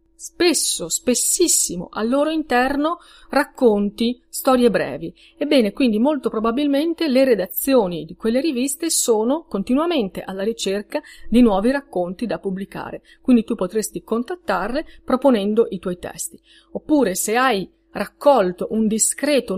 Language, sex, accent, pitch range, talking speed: Italian, female, native, 200-290 Hz, 125 wpm